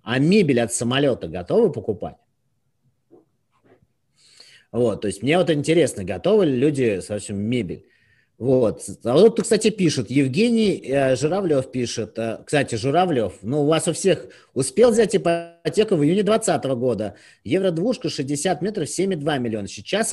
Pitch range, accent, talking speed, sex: 120-160 Hz, native, 135 wpm, male